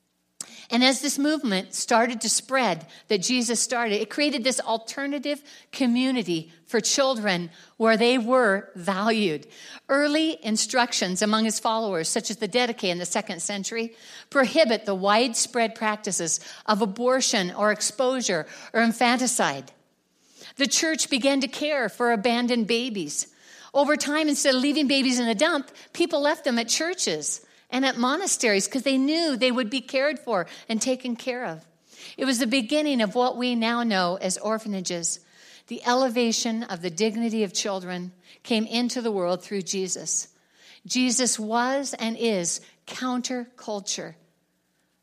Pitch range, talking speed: 195-255 Hz, 145 wpm